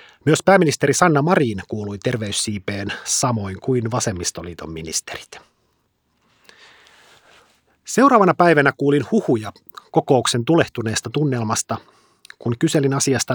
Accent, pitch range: native, 115-150 Hz